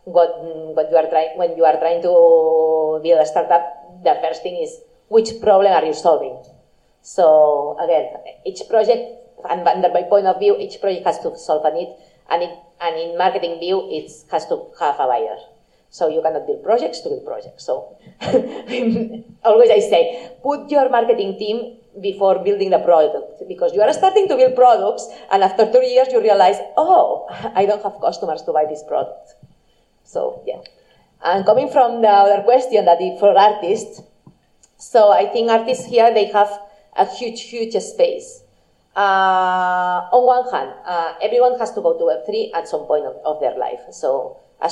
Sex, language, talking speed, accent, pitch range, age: female, English, 180 wpm, Spanish, 170-250 Hz, 30-49